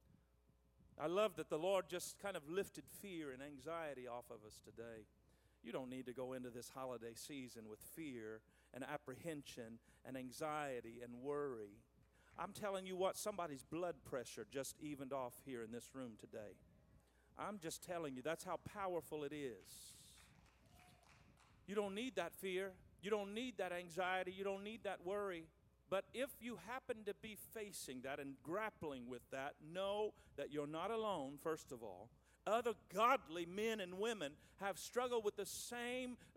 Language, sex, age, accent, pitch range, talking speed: English, male, 50-69, American, 145-210 Hz, 170 wpm